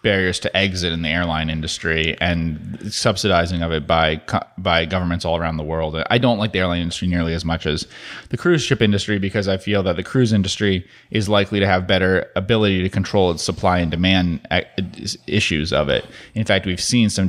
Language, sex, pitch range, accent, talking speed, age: English, male, 85-100 Hz, American, 205 wpm, 30-49